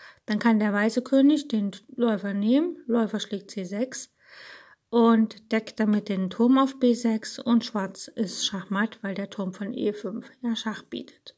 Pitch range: 205-250 Hz